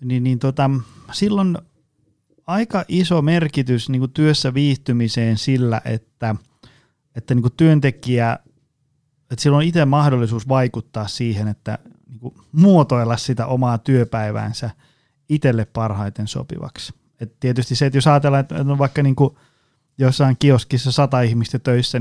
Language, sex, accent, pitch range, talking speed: Finnish, male, native, 120-145 Hz, 125 wpm